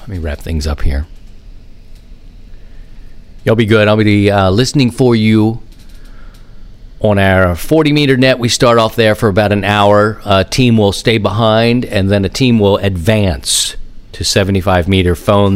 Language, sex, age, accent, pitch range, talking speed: English, male, 50-69, American, 95-115 Hz, 160 wpm